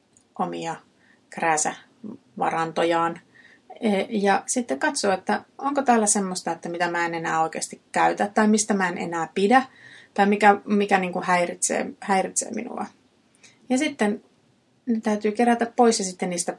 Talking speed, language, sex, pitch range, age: 140 wpm, Finnish, female, 175-220 Hz, 30-49